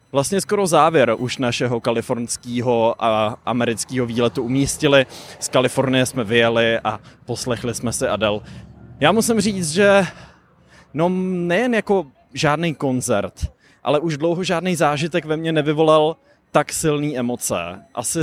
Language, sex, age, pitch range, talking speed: English, male, 20-39, 125-155 Hz, 135 wpm